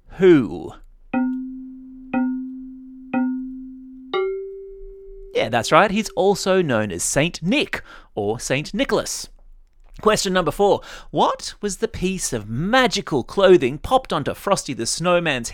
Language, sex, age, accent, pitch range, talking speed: English, male, 30-49, Australian, 155-260 Hz, 110 wpm